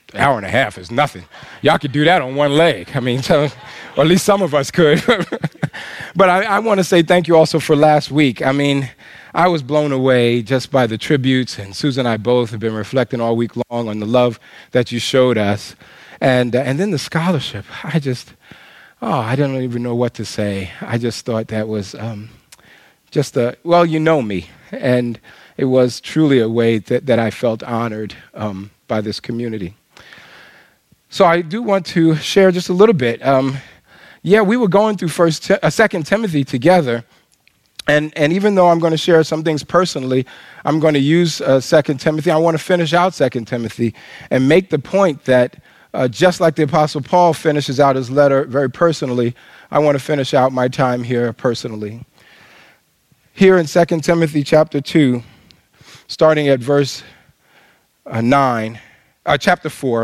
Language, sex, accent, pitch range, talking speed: English, male, American, 120-165 Hz, 195 wpm